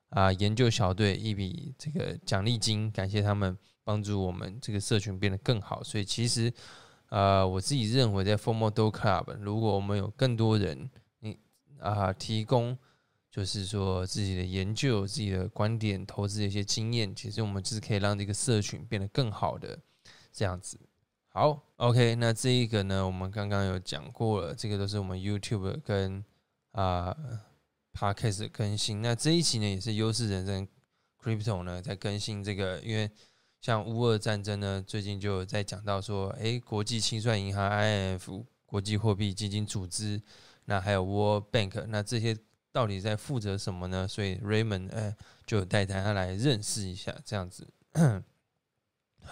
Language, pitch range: Chinese, 100-115 Hz